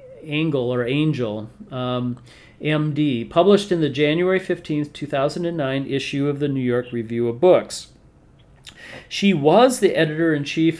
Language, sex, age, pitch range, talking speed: English, male, 40-59, 135-165 Hz, 120 wpm